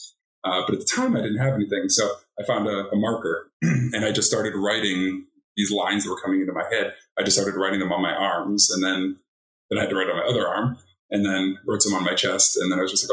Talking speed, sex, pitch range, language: 275 wpm, male, 95-120 Hz, English